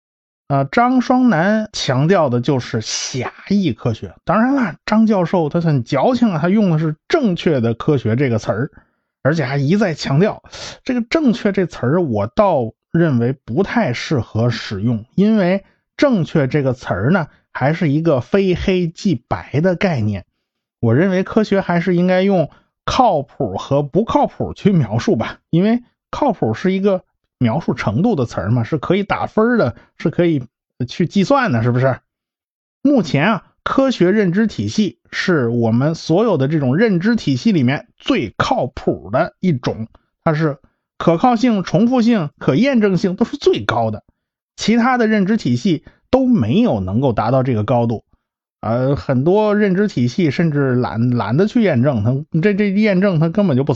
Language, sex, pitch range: Chinese, male, 130-205 Hz